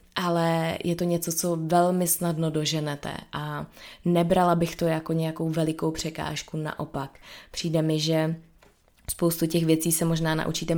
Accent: native